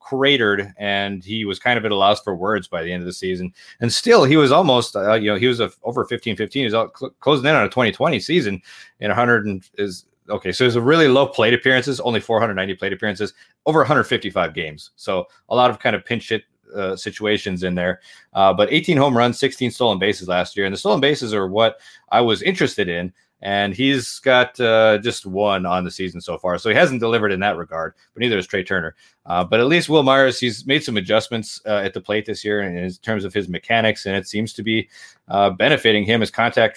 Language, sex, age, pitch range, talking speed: English, male, 30-49, 100-120 Hz, 240 wpm